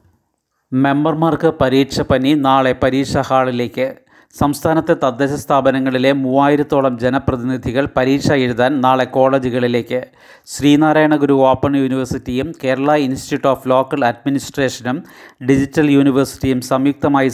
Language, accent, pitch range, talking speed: Malayalam, native, 130-145 Hz, 90 wpm